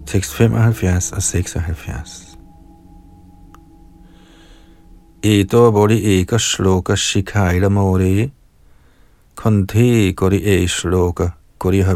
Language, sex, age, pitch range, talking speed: Danish, male, 50-69, 90-115 Hz, 70 wpm